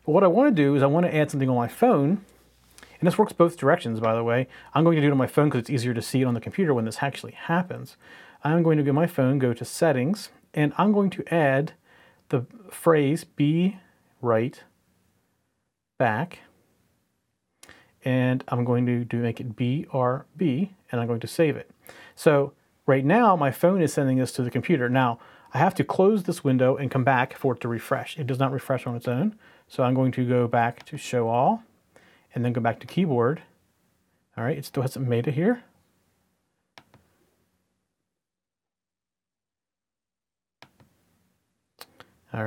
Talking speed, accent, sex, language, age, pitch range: 190 wpm, American, male, English, 40-59, 125-170 Hz